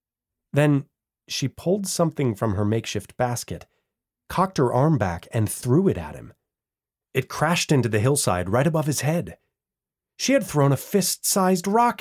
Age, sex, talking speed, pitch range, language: 30-49, male, 160 wpm, 115-180 Hz, English